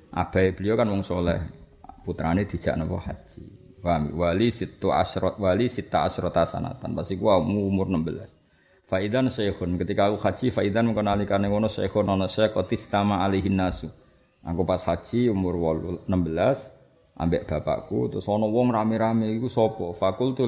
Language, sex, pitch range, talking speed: Malay, male, 90-115 Hz, 150 wpm